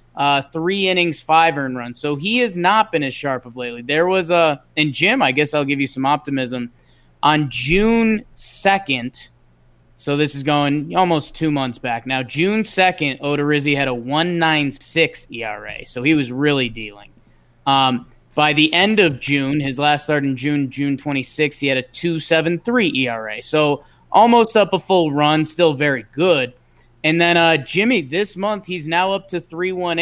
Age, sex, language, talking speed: 20-39, male, English, 180 wpm